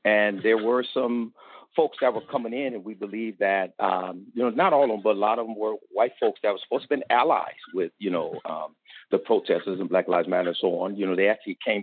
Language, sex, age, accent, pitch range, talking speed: English, male, 50-69, American, 100-115 Hz, 270 wpm